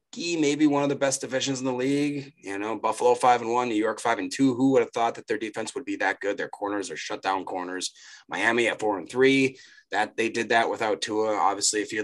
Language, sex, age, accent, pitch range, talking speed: English, male, 30-49, American, 105-140 Hz, 260 wpm